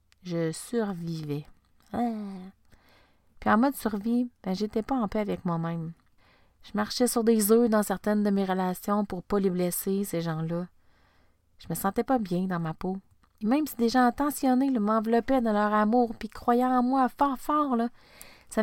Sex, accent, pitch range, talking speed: female, Canadian, 180-225 Hz, 180 wpm